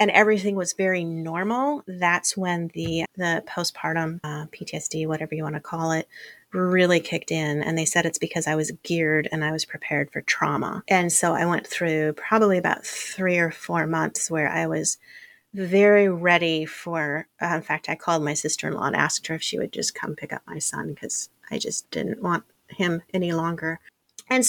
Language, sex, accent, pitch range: English, female, American, 165-205 Hz